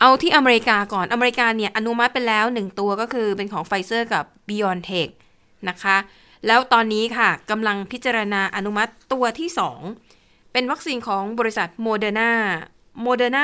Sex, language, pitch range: female, Thai, 195-235 Hz